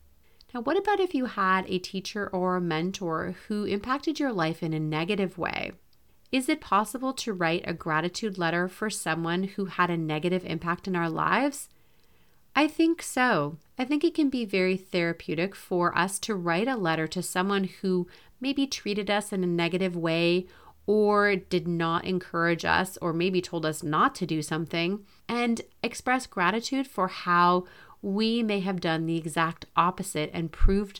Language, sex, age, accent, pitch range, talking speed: English, female, 30-49, American, 165-205 Hz, 175 wpm